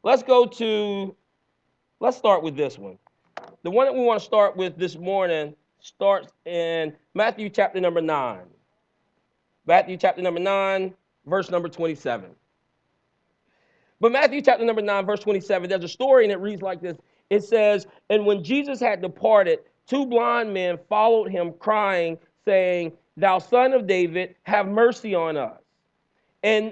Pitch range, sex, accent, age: 175-240 Hz, male, American, 40-59